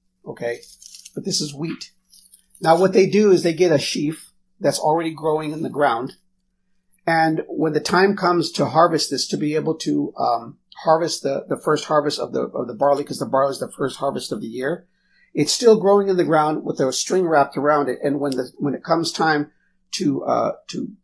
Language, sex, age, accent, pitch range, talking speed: English, male, 50-69, American, 145-185 Hz, 215 wpm